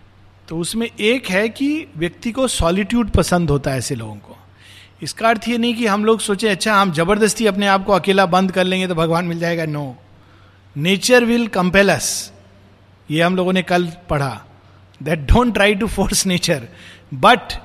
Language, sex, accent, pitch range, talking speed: Hindi, male, native, 130-195 Hz, 180 wpm